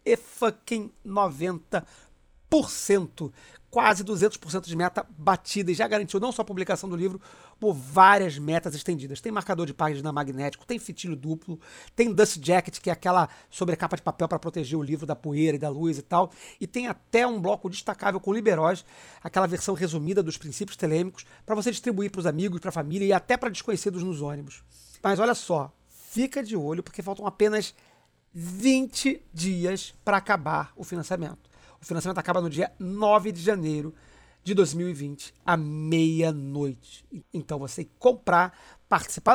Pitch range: 165-210 Hz